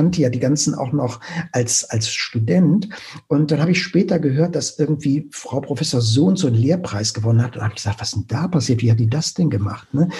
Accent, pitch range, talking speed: German, 120-160 Hz, 230 wpm